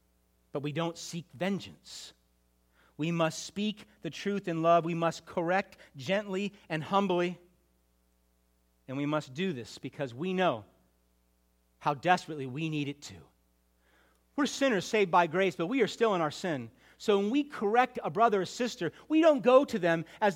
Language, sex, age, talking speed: English, male, 40-59, 170 wpm